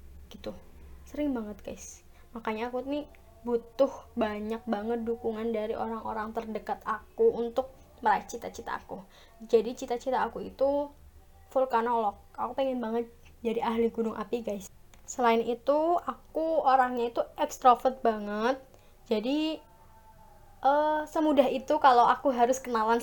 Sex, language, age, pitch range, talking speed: female, Indonesian, 10-29, 225-265 Hz, 125 wpm